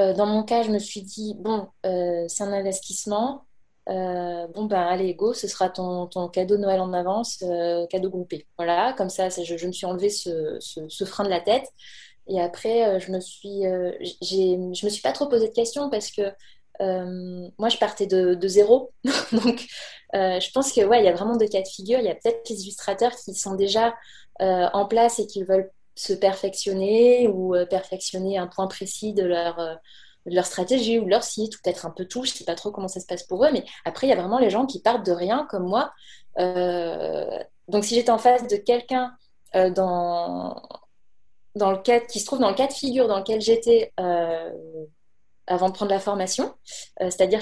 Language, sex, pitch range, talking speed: French, female, 185-230 Hz, 225 wpm